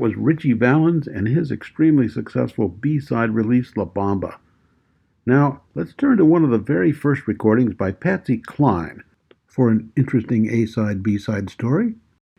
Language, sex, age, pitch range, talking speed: English, male, 60-79, 105-150 Hz, 145 wpm